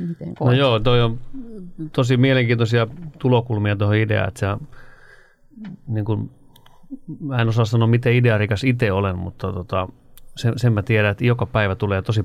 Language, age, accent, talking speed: Finnish, 30-49, native, 155 wpm